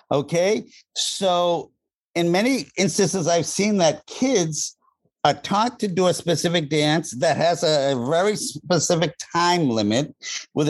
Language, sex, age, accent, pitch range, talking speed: English, male, 50-69, American, 160-235 Hz, 140 wpm